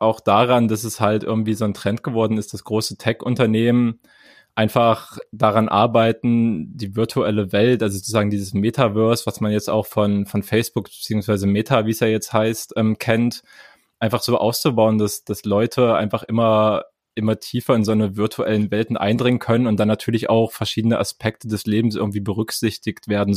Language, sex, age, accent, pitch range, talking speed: German, male, 20-39, German, 105-115 Hz, 175 wpm